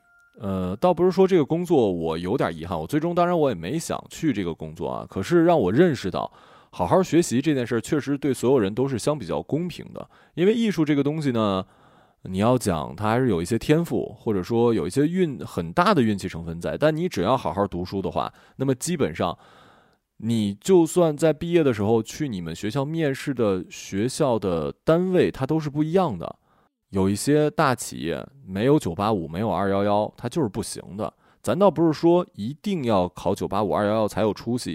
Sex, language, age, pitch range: male, Chinese, 20-39, 95-155 Hz